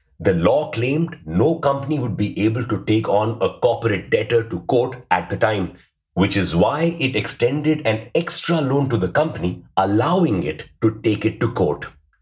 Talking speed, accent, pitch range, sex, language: 180 wpm, Indian, 100-145 Hz, male, English